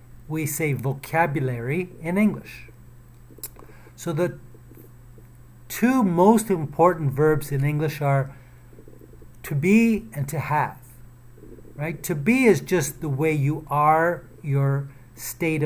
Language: English